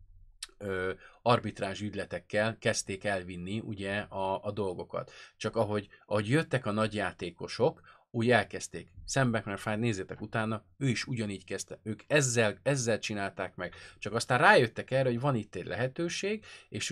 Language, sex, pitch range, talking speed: Hungarian, male, 100-125 Hz, 145 wpm